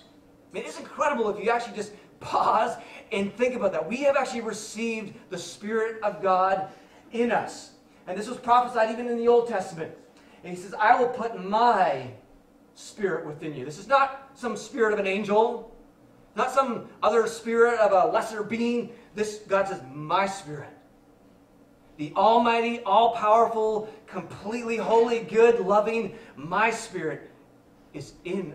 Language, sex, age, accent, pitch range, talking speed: English, male, 30-49, American, 185-230 Hz, 155 wpm